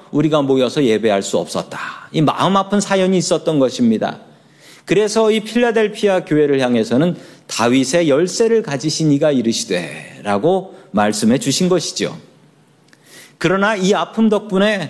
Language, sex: Korean, male